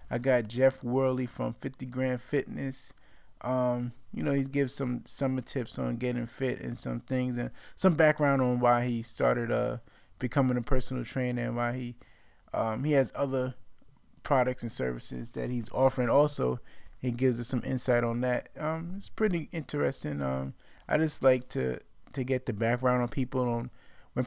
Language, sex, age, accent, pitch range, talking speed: English, male, 20-39, American, 120-135 Hz, 180 wpm